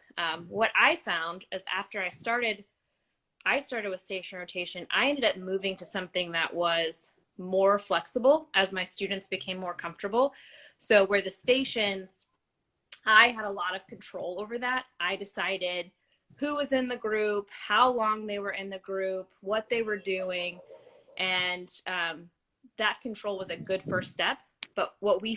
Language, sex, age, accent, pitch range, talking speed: Portuguese, female, 20-39, American, 180-215 Hz, 170 wpm